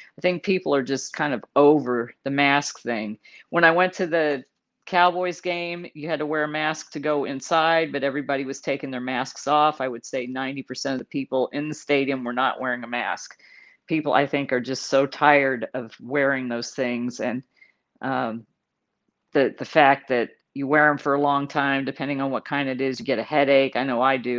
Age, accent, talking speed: 40-59, American, 215 wpm